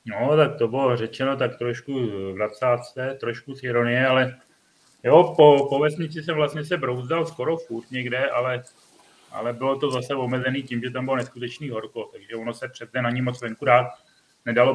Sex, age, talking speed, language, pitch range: male, 30-49, 185 wpm, Czech, 115-130 Hz